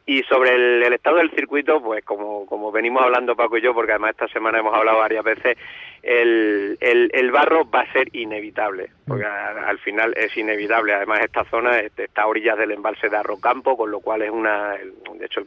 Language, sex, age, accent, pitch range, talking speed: Spanish, male, 40-59, Spanish, 105-130 Hz, 215 wpm